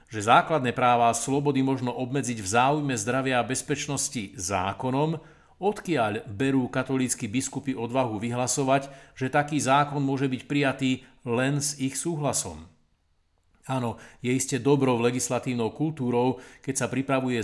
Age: 50-69